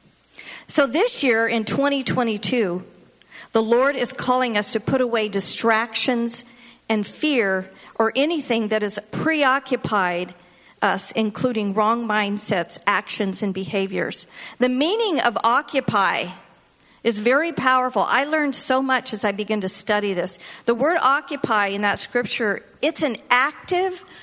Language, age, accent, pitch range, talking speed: English, 50-69, American, 210-265 Hz, 135 wpm